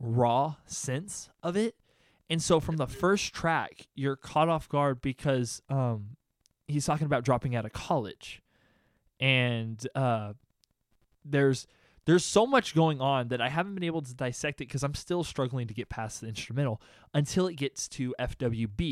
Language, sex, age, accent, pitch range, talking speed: English, male, 20-39, American, 115-150 Hz, 170 wpm